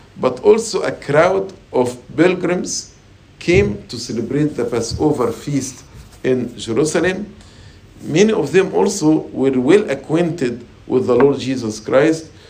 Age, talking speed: 50-69, 125 wpm